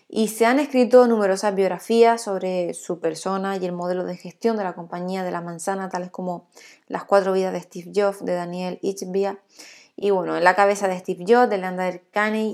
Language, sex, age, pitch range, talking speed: Spanish, female, 20-39, 185-235 Hz, 195 wpm